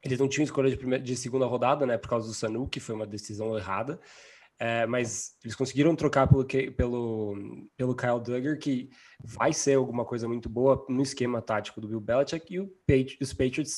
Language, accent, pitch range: Portuguese, Brazilian, 115-140 Hz